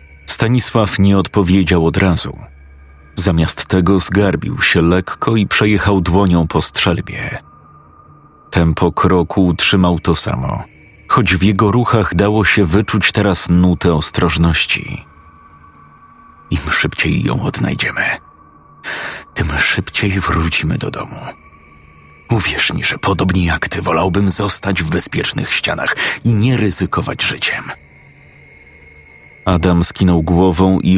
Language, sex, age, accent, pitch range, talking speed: Polish, male, 40-59, native, 80-100 Hz, 110 wpm